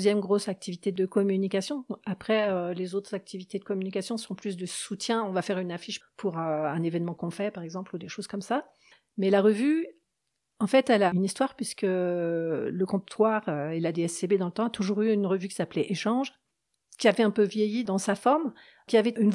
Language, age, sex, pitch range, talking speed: French, 40-59, female, 190-225 Hz, 215 wpm